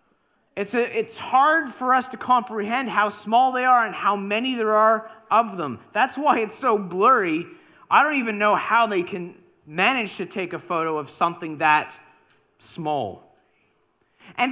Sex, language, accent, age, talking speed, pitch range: male, English, American, 30-49, 170 wpm, 205-275 Hz